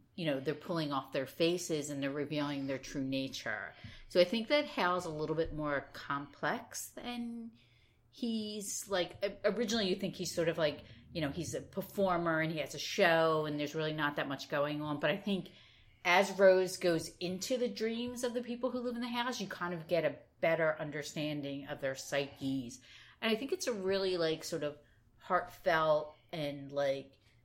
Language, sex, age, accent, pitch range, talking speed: English, female, 40-59, American, 135-175 Hz, 195 wpm